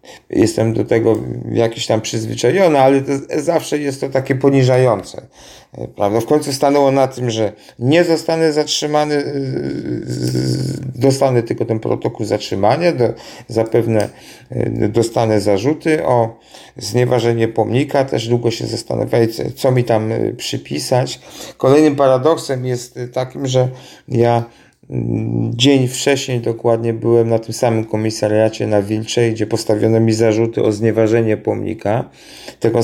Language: Polish